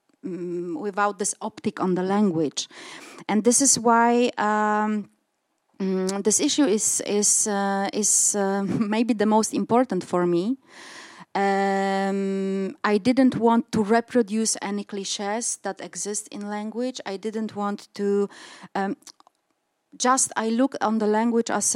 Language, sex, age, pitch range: German, female, 30-49, 190-230 Hz